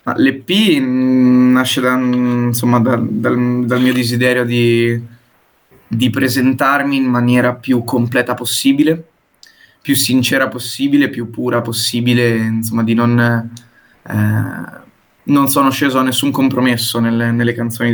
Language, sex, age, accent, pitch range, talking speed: Italian, male, 20-39, native, 115-130 Hz, 100 wpm